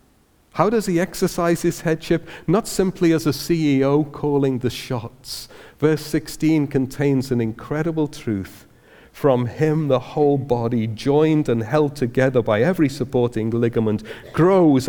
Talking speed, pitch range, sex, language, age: 135 wpm, 110-150 Hz, male, English, 50-69